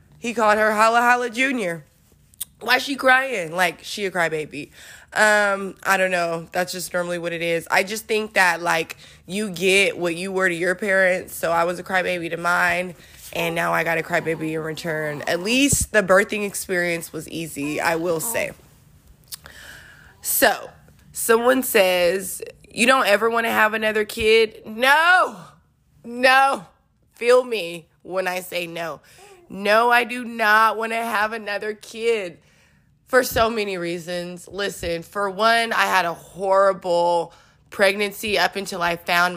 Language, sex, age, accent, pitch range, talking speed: English, female, 20-39, American, 170-215 Hz, 160 wpm